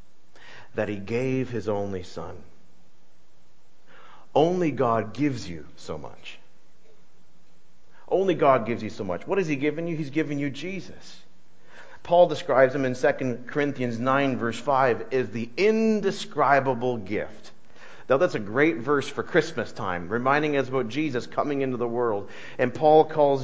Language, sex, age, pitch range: English, male, 50-69, 140-190 Hz